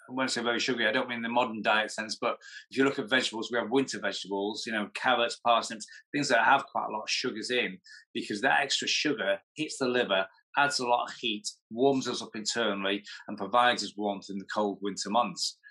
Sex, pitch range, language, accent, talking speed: male, 105-130 Hz, English, British, 230 wpm